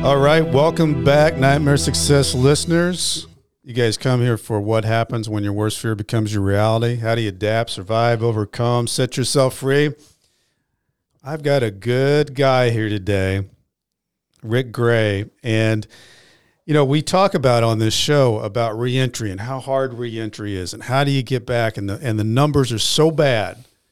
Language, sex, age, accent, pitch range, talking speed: English, male, 50-69, American, 110-135 Hz, 170 wpm